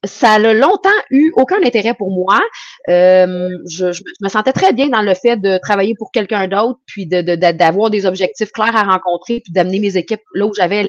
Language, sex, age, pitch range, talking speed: French, female, 30-49, 185-245 Hz, 220 wpm